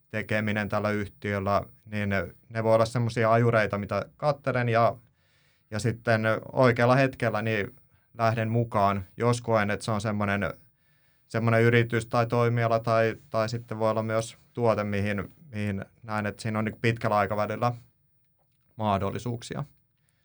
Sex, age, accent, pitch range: male, 30-49, native, 105-125 Hz